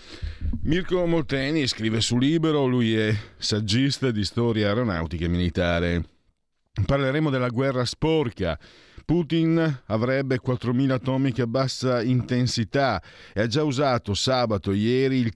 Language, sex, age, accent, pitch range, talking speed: Italian, male, 50-69, native, 95-125 Hz, 115 wpm